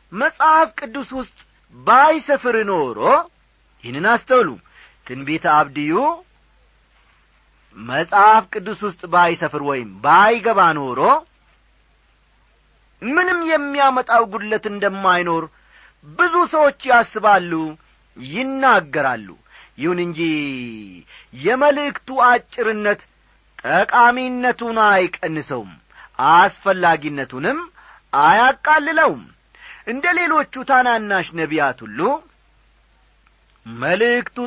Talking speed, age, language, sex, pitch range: 70 wpm, 40-59, Amharic, male, 170-255 Hz